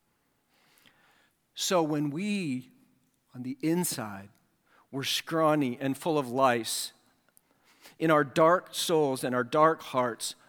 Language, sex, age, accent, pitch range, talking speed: English, male, 50-69, American, 140-190 Hz, 115 wpm